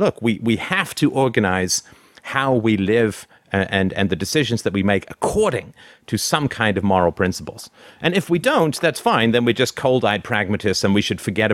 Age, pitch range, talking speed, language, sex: 40-59, 95-120 Hz, 205 wpm, English, male